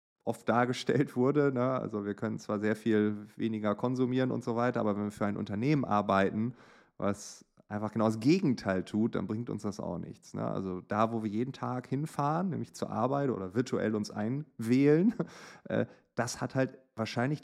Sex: male